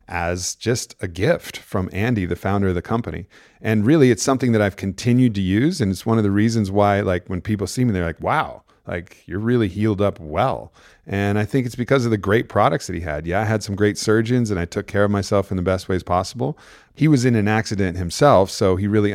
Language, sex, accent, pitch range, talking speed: English, male, American, 90-110 Hz, 250 wpm